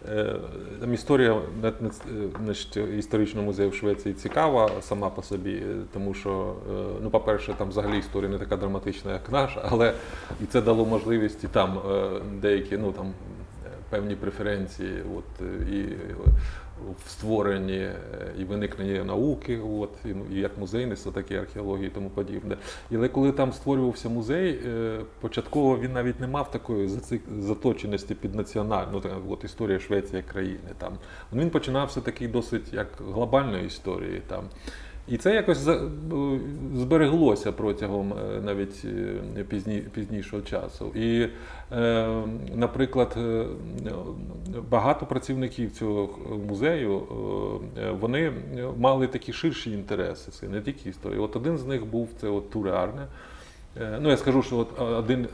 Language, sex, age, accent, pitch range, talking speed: Ukrainian, male, 30-49, native, 100-120 Hz, 125 wpm